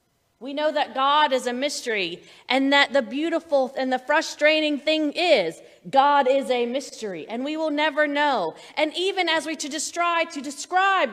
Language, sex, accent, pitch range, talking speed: English, female, American, 240-290 Hz, 175 wpm